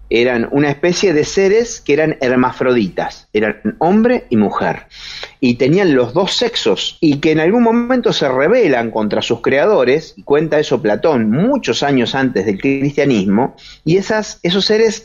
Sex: male